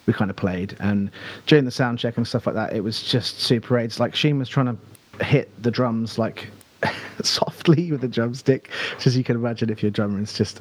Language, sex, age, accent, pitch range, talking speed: English, male, 30-49, British, 105-130 Hz, 230 wpm